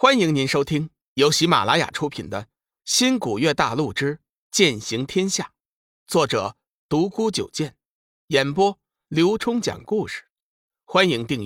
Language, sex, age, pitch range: Chinese, male, 50-69, 110-180 Hz